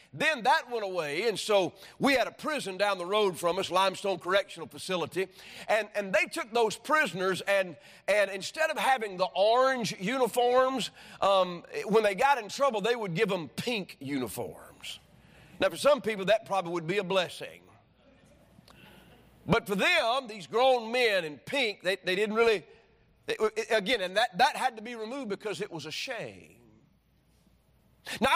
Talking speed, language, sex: 175 wpm, English, male